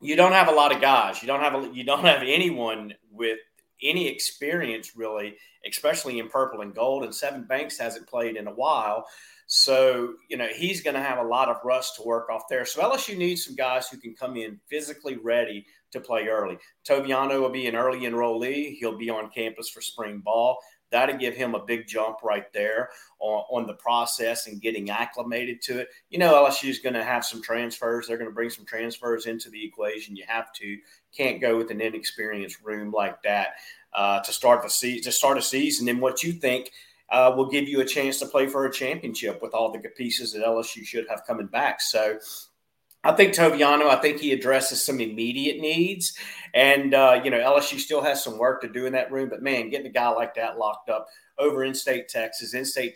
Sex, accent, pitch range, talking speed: male, American, 115-135 Hz, 220 wpm